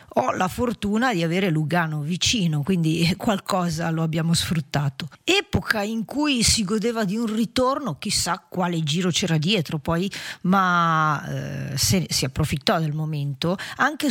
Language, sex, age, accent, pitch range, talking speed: English, female, 40-59, Italian, 160-210 Hz, 140 wpm